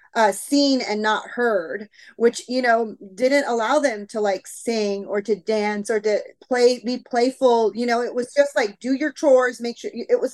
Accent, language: American, English